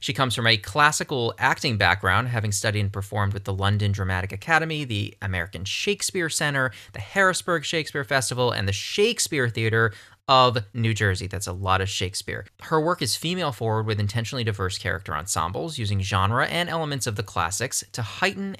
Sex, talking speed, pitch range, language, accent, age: male, 175 wpm, 105-145 Hz, English, American, 20-39